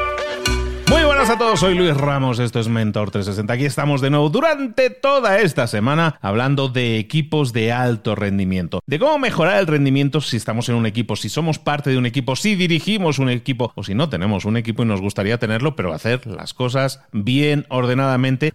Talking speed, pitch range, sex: 190 wpm, 115-155 Hz, male